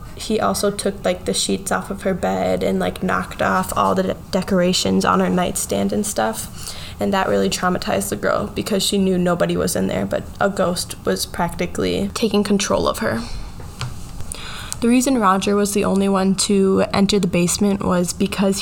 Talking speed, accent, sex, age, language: 185 wpm, American, female, 10-29, English